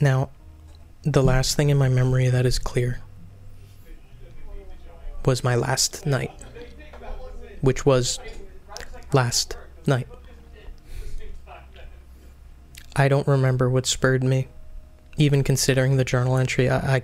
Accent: American